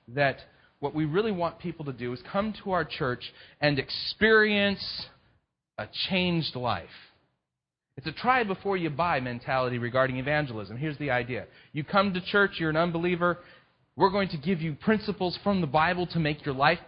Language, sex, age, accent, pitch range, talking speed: English, male, 30-49, American, 130-180 Hz, 165 wpm